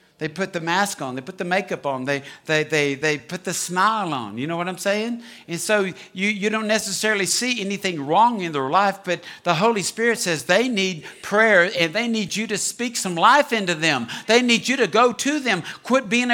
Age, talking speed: 60-79, 230 wpm